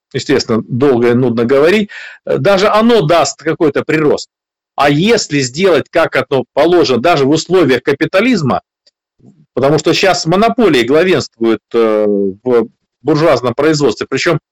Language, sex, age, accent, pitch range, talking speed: Russian, male, 50-69, native, 150-205 Hz, 120 wpm